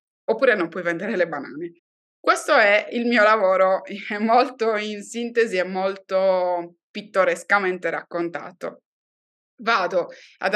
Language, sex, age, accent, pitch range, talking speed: Italian, female, 20-39, native, 175-225 Hz, 120 wpm